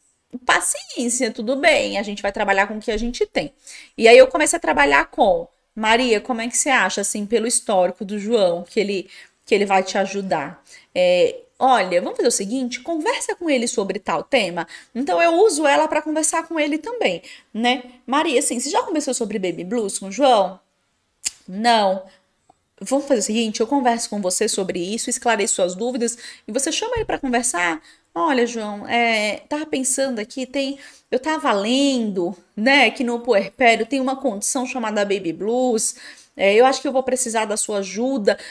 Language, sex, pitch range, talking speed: Portuguese, female, 210-275 Hz, 190 wpm